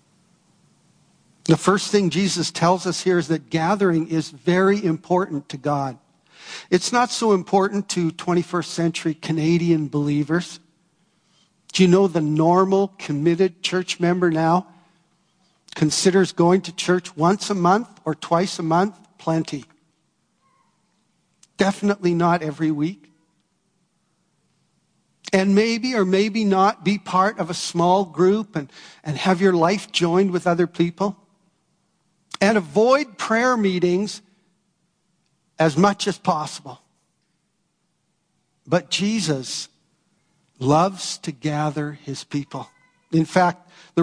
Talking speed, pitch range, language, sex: 120 wpm, 170-195 Hz, English, male